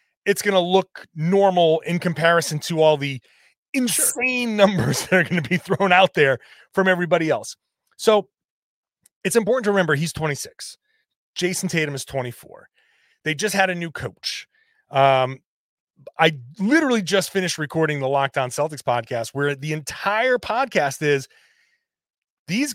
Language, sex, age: English, male, 30-49